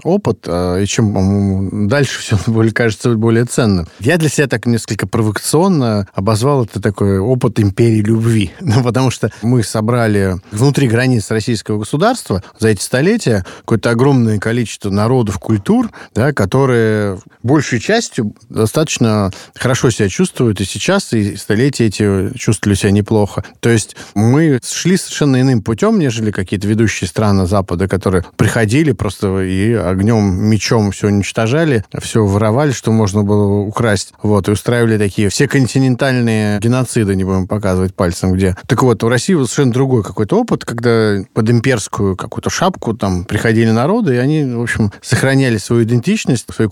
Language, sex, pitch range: Russian, male, 105-125 Hz